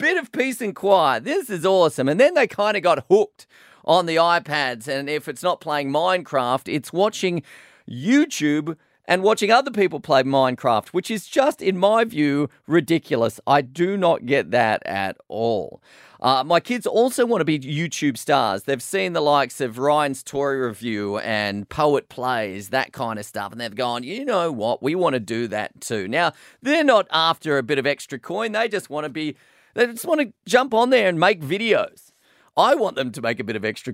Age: 30-49